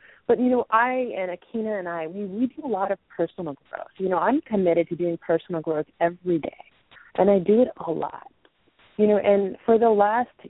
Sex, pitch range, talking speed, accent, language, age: female, 165-200 Hz, 215 wpm, American, English, 30-49